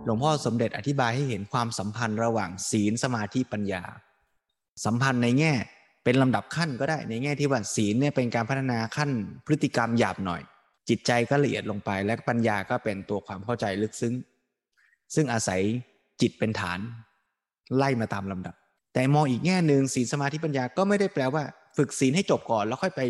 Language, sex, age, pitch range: Thai, male, 20-39, 110-145 Hz